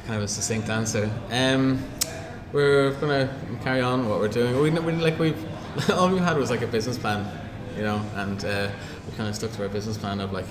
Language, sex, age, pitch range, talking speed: English, male, 20-39, 100-115 Hz, 230 wpm